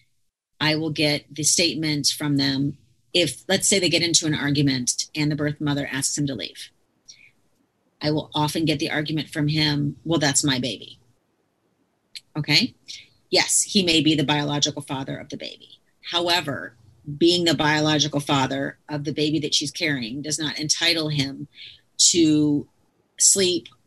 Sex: female